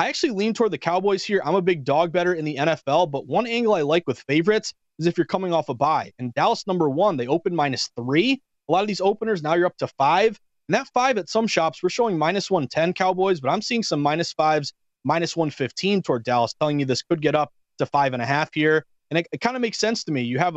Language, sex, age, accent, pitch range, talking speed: English, male, 30-49, American, 145-185 Hz, 265 wpm